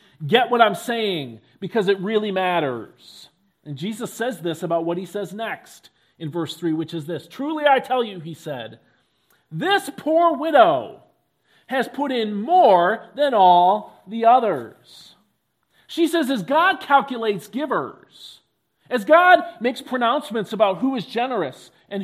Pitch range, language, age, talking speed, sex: 175-260 Hz, English, 40-59, 150 wpm, male